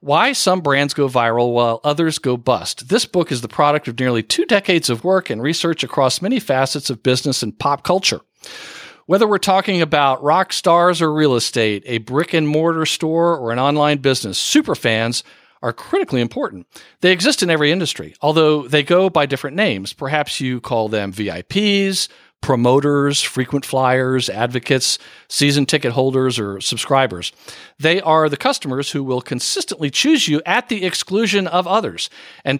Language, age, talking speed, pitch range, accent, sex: English, 50-69, 170 wpm, 125-175 Hz, American, male